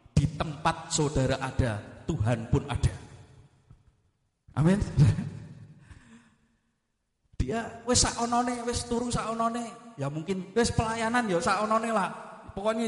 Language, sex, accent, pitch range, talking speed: Indonesian, male, native, 145-230 Hz, 95 wpm